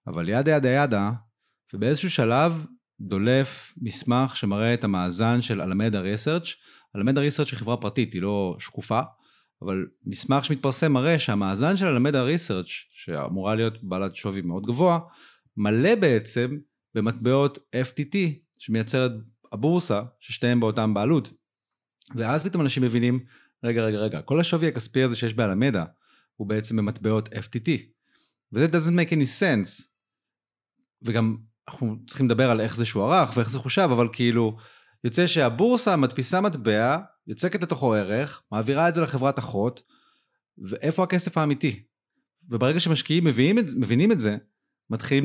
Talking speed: 130 wpm